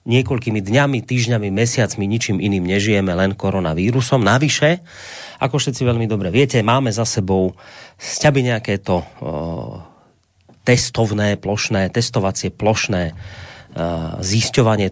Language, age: Slovak, 30-49